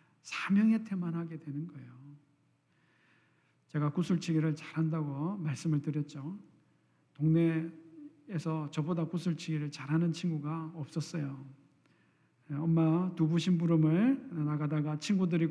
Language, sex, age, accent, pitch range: Korean, male, 40-59, native, 160-210 Hz